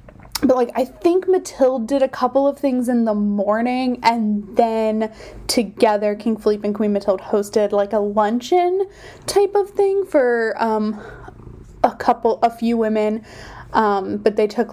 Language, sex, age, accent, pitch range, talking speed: English, female, 20-39, American, 205-250 Hz, 160 wpm